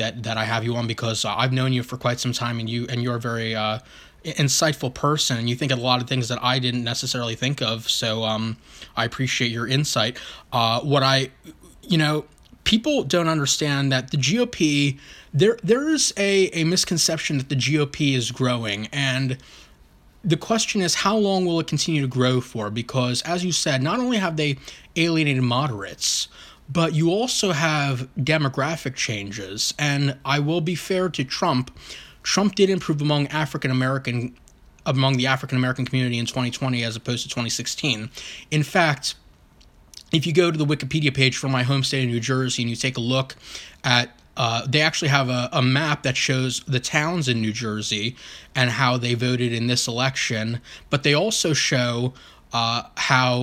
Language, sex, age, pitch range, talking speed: English, male, 20-39, 120-155 Hz, 190 wpm